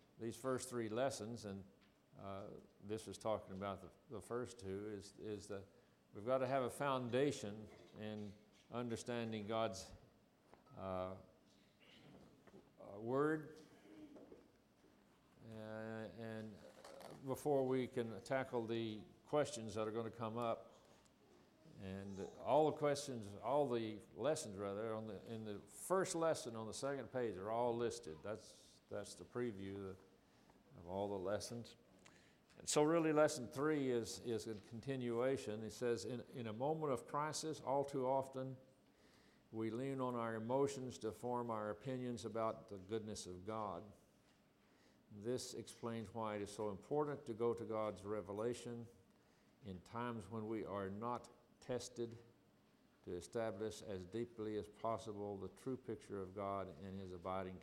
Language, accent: English, American